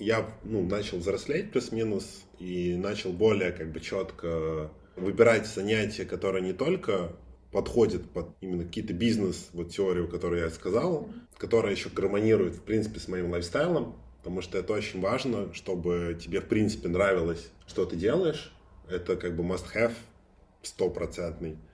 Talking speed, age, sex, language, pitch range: 145 wpm, 20-39, male, Russian, 85-105 Hz